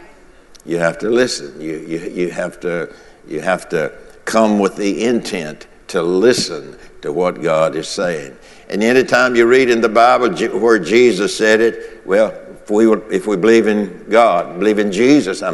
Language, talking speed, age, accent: English, 180 wpm, 60-79, American